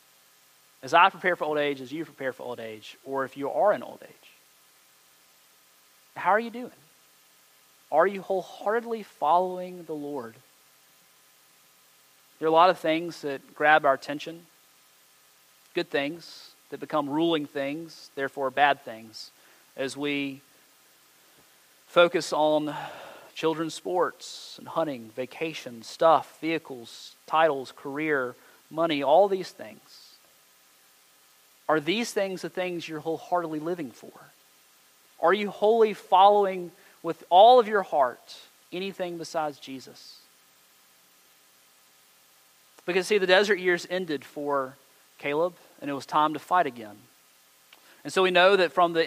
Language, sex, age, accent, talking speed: English, male, 30-49, American, 130 wpm